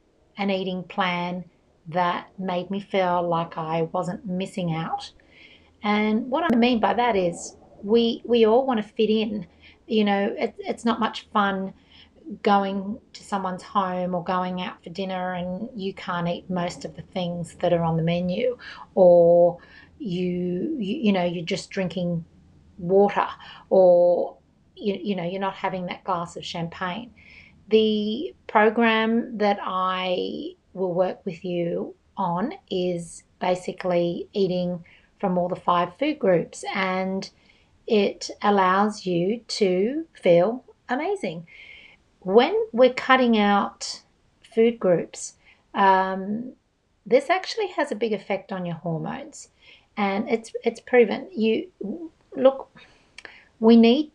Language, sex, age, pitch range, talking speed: English, female, 30-49, 180-225 Hz, 135 wpm